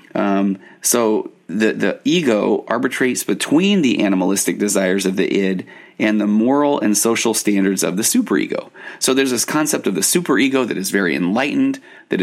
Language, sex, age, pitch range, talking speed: English, male, 30-49, 95-125 Hz, 165 wpm